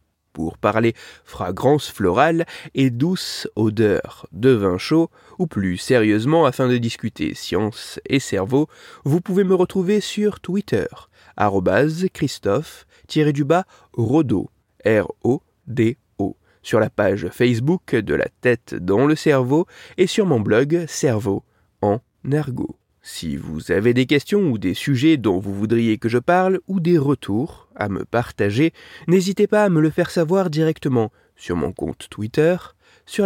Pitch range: 115-175 Hz